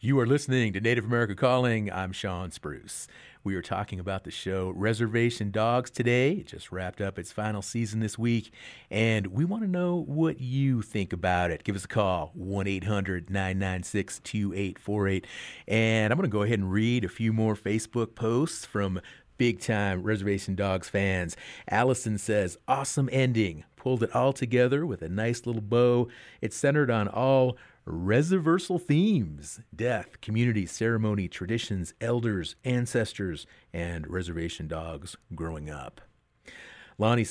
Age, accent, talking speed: 40-59, American, 150 wpm